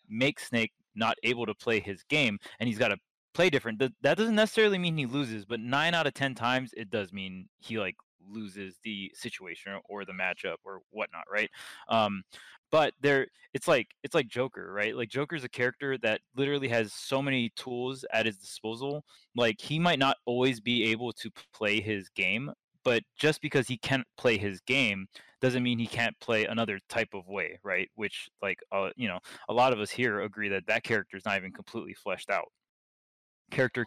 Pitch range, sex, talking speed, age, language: 100-135 Hz, male, 200 wpm, 20-39, English